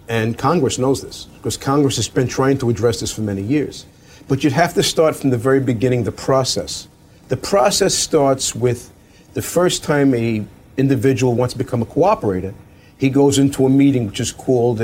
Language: English